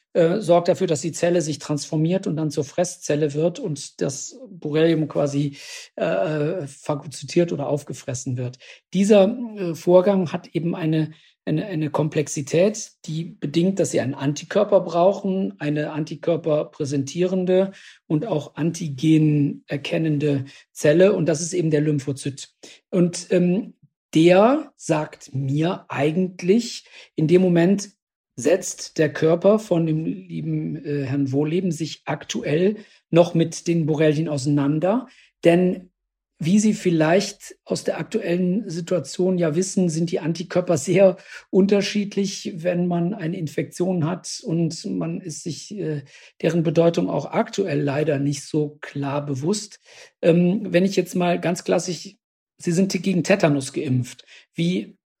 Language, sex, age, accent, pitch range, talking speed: German, male, 50-69, German, 150-185 Hz, 135 wpm